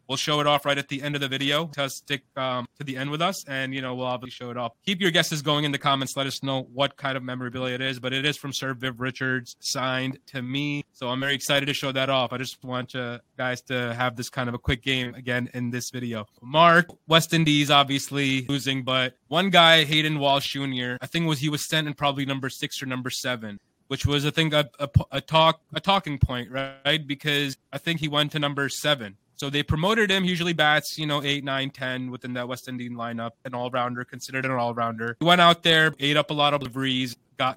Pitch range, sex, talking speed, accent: 130-150 Hz, male, 250 wpm, American